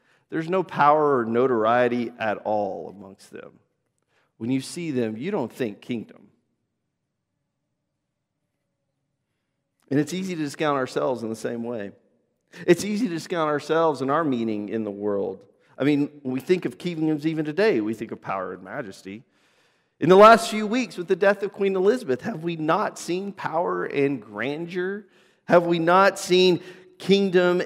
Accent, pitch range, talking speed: American, 140-195 Hz, 165 wpm